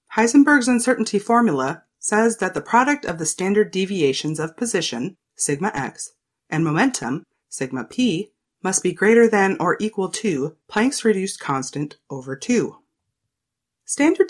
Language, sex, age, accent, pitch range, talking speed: English, female, 30-49, American, 155-230 Hz, 135 wpm